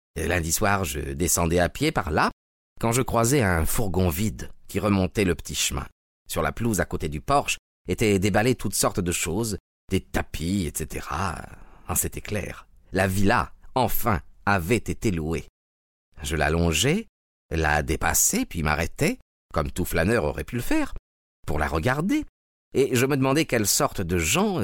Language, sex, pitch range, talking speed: French, male, 80-115 Hz, 165 wpm